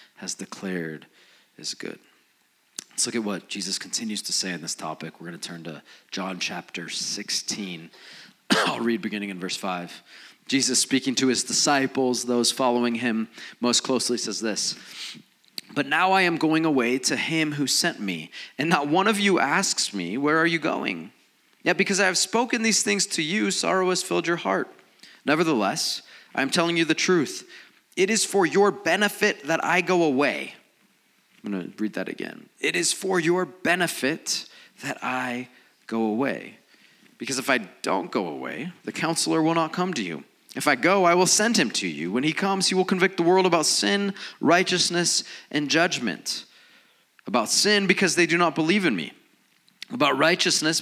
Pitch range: 120-185 Hz